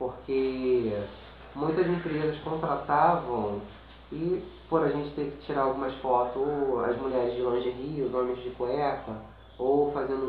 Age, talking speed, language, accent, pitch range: 20-39, 140 wpm, Portuguese, Brazilian, 125-160 Hz